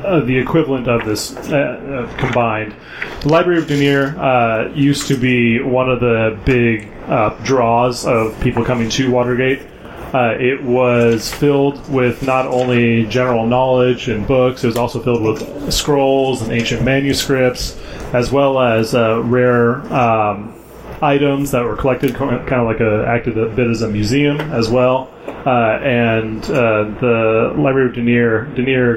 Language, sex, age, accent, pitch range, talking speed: English, male, 30-49, American, 115-130 Hz, 160 wpm